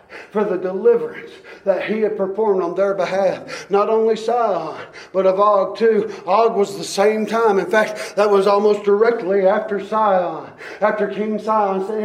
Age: 40-59